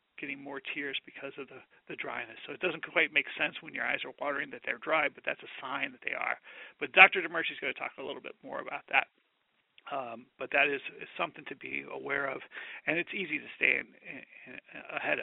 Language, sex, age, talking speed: English, male, 40-59, 240 wpm